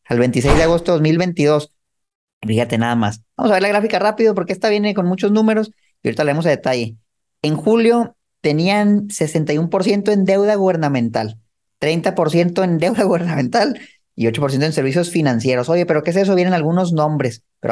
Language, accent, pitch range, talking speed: Spanish, Mexican, 145-185 Hz, 175 wpm